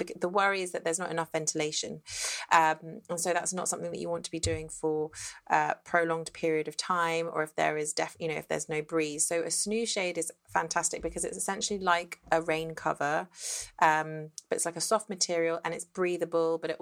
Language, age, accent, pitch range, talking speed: English, 30-49, British, 155-185 Hz, 220 wpm